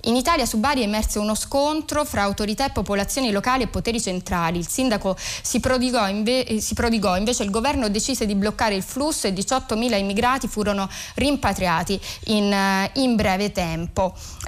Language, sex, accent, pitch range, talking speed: Italian, female, native, 200-260 Hz, 160 wpm